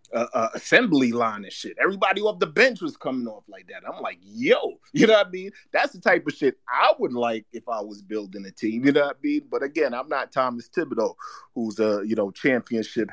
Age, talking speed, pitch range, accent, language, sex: 30-49, 240 wpm, 110-155 Hz, American, English, male